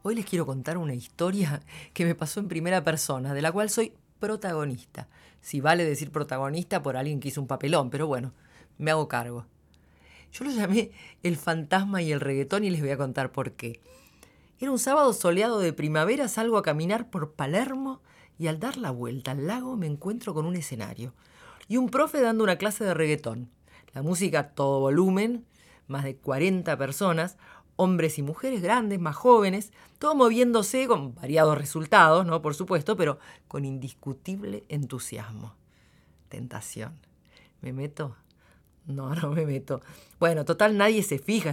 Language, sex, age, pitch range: Spanish, female, 40-59, 135-205 Hz